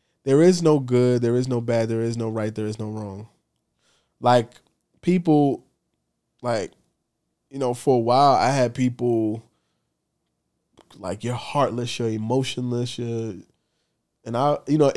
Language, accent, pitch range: English, American, 110-140 Hz